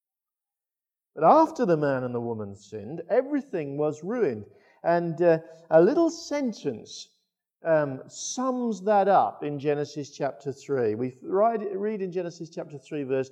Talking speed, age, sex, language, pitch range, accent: 140 wpm, 50-69, male, English, 145-220 Hz, British